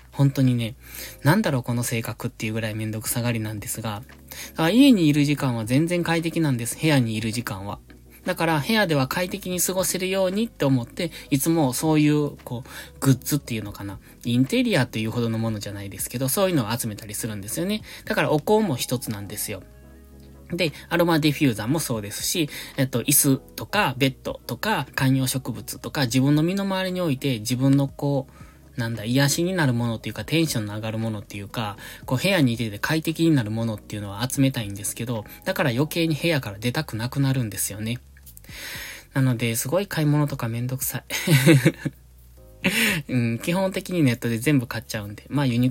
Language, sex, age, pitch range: Japanese, male, 20-39, 110-150 Hz